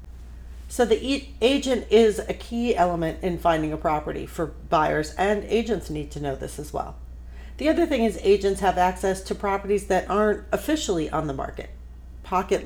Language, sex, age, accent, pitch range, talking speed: English, female, 40-59, American, 150-210 Hz, 175 wpm